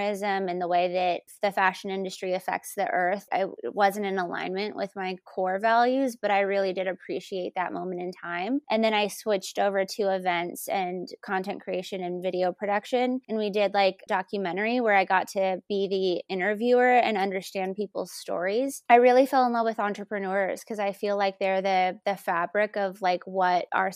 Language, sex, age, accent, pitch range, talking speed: English, female, 20-39, American, 185-205 Hz, 190 wpm